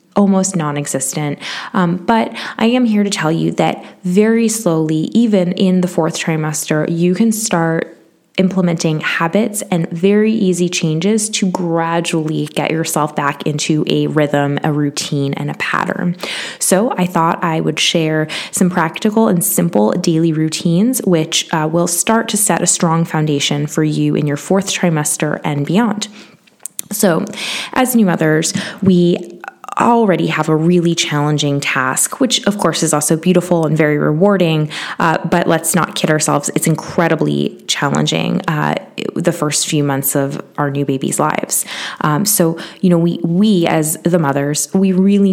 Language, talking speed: English, 160 wpm